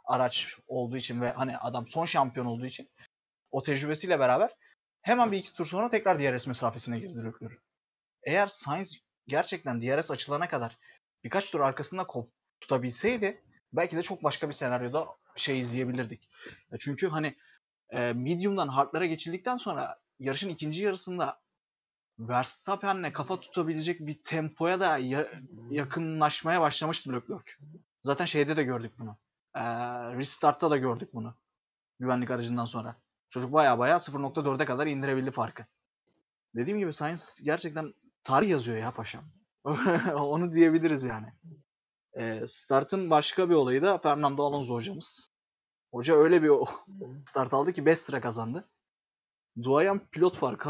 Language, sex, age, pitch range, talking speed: Turkish, male, 30-49, 125-165 Hz, 125 wpm